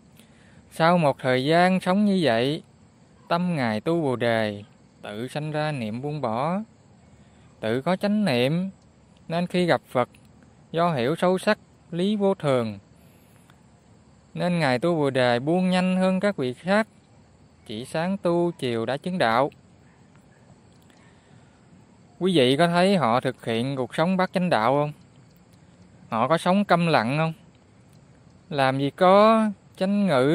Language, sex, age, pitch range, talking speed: Vietnamese, male, 20-39, 120-180 Hz, 150 wpm